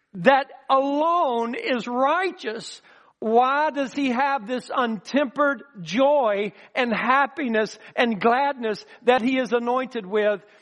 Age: 60-79